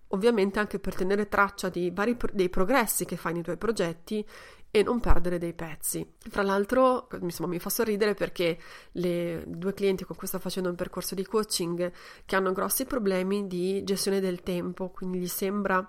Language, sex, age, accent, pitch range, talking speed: Italian, female, 30-49, native, 180-210 Hz, 180 wpm